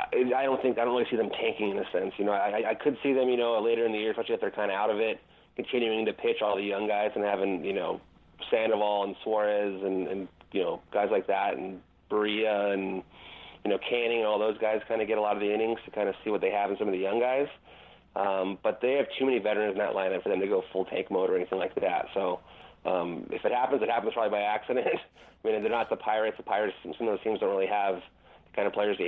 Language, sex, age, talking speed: English, male, 30-49, 280 wpm